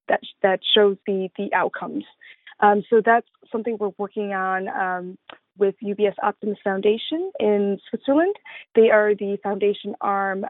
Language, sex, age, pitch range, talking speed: English, female, 20-39, 195-230 Hz, 145 wpm